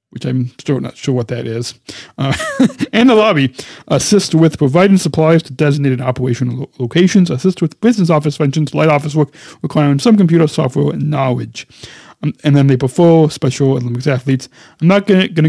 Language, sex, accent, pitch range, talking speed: English, male, American, 130-165 Hz, 170 wpm